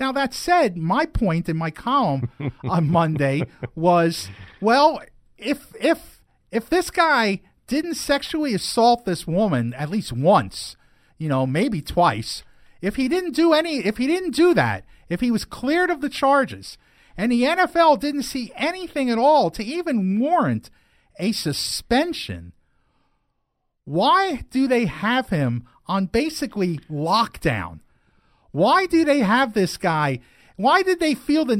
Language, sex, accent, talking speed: English, male, American, 150 wpm